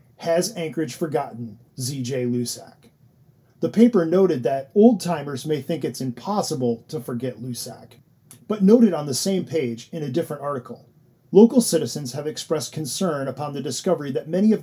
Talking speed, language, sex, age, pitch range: 155 wpm, English, male, 40-59, 130-175 Hz